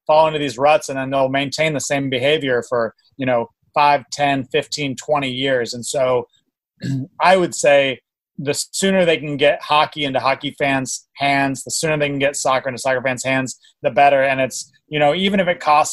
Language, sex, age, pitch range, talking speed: English, male, 30-49, 135-175 Hz, 205 wpm